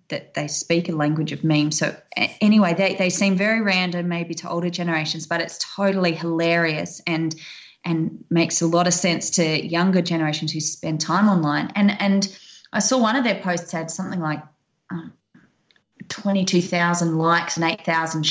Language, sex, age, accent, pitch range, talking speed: English, female, 20-39, Australian, 160-185 Hz, 180 wpm